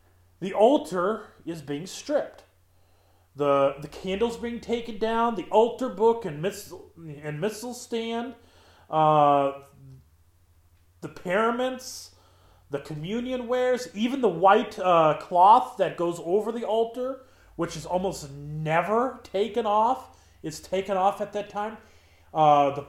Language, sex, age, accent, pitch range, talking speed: English, male, 30-49, American, 140-205 Hz, 125 wpm